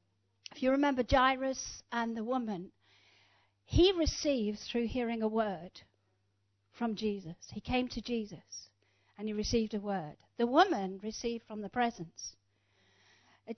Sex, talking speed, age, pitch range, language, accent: female, 135 wpm, 50-69, 185-250 Hz, English, British